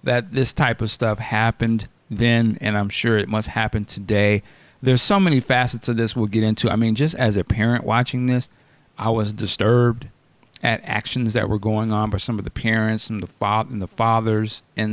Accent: American